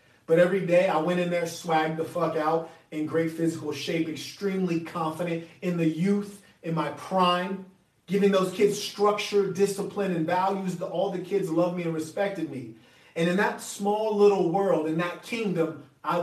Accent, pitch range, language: American, 165-205 Hz, English